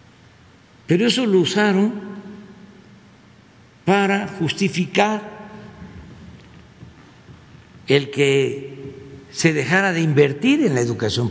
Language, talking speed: Spanish, 80 wpm